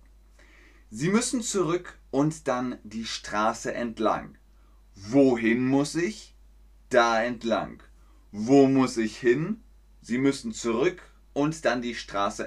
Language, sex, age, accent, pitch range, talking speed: German, male, 30-49, German, 115-190 Hz, 115 wpm